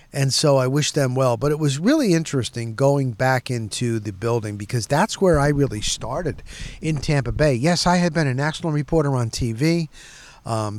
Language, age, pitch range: English, 50-69, 120-160 Hz